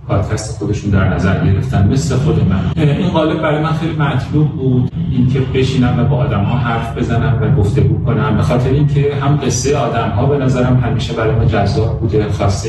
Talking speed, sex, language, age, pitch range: 195 wpm, male, Persian, 30-49, 110-130 Hz